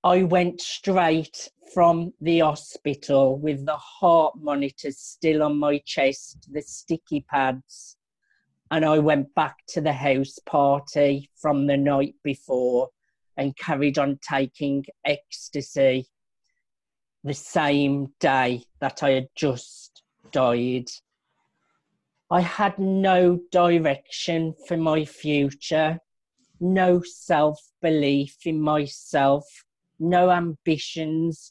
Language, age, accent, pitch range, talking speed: Spanish, 40-59, British, 140-165 Hz, 105 wpm